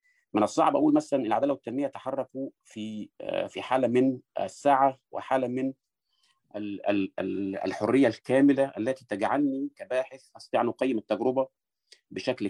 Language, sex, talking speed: Arabic, male, 120 wpm